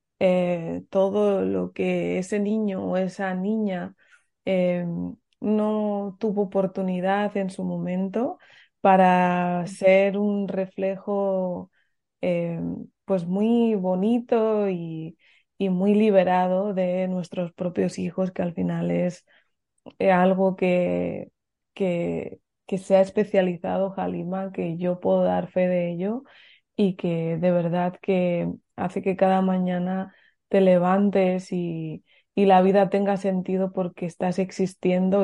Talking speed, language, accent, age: 120 wpm, Spanish, Spanish, 20-39